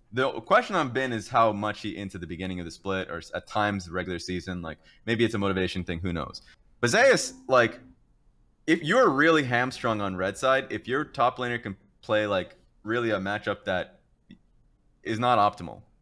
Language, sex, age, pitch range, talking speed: English, male, 20-39, 90-110 Hz, 195 wpm